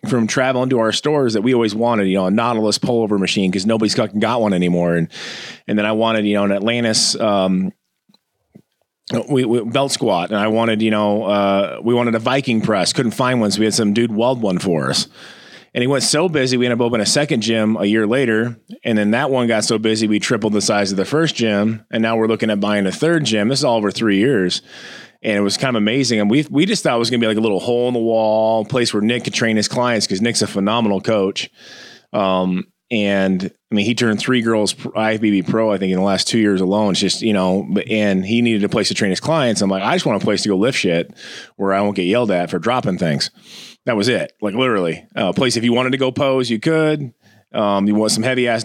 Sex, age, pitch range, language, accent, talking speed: male, 30-49, 100-120 Hz, English, American, 260 wpm